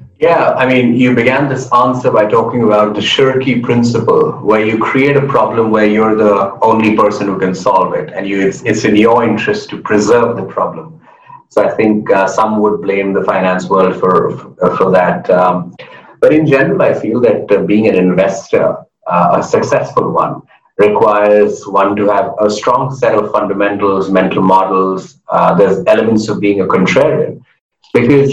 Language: English